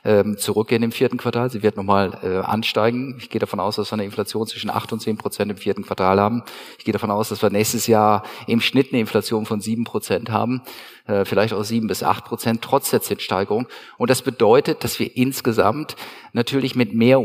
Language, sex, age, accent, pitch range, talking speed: German, male, 50-69, German, 105-120 Hz, 210 wpm